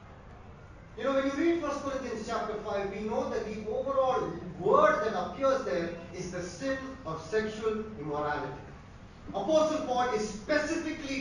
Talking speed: 150 wpm